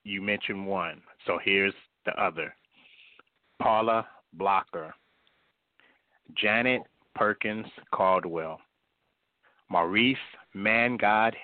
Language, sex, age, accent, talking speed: English, male, 30-49, American, 75 wpm